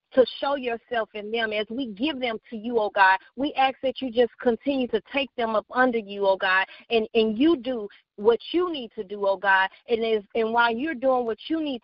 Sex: female